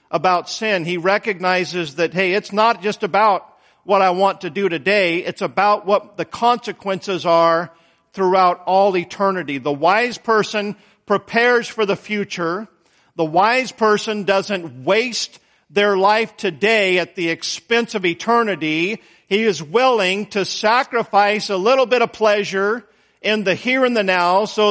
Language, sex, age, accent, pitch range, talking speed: English, male, 50-69, American, 190-225 Hz, 150 wpm